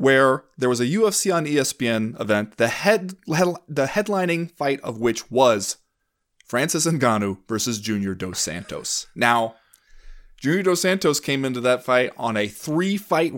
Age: 30-49